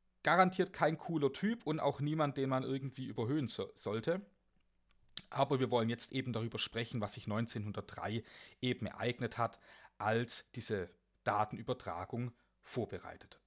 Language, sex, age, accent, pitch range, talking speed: German, male, 40-59, German, 110-150 Hz, 130 wpm